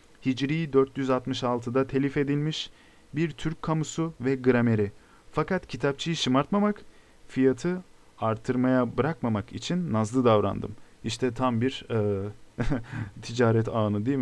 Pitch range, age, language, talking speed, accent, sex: 120-150 Hz, 40-59, Turkish, 105 wpm, native, male